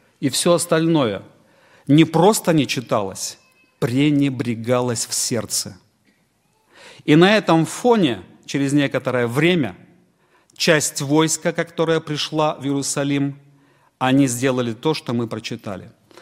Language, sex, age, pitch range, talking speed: Russian, male, 40-59, 115-160 Hz, 105 wpm